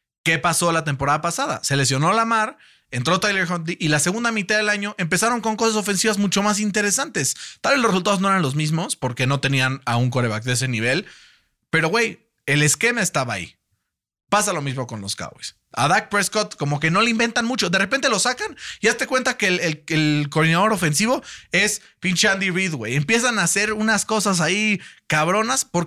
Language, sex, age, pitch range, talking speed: Spanish, male, 30-49, 130-200 Hz, 205 wpm